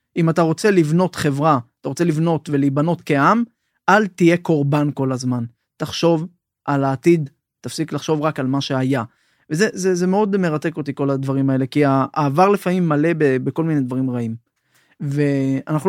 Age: 30-49